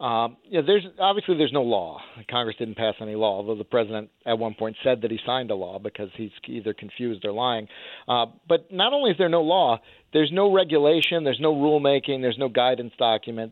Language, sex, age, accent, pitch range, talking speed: English, male, 50-69, American, 110-140 Hz, 215 wpm